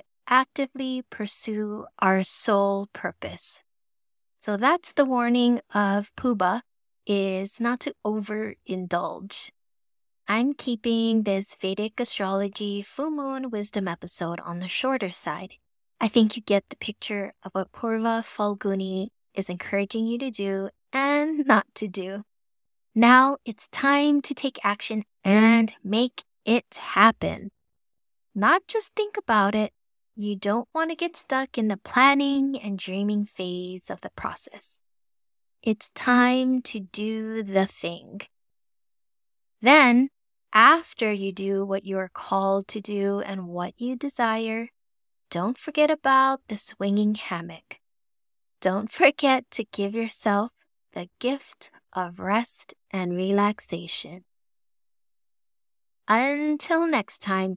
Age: 20-39